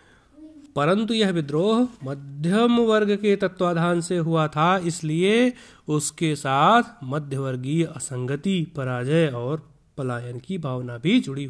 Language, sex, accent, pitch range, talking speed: Hindi, male, native, 135-195 Hz, 115 wpm